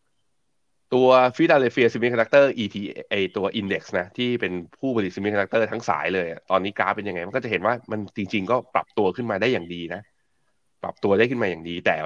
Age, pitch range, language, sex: 20-39, 90-110 Hz, Thai, male